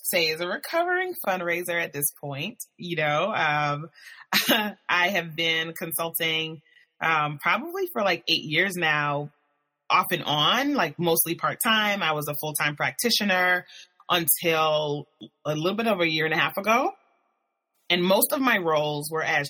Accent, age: American, 30-49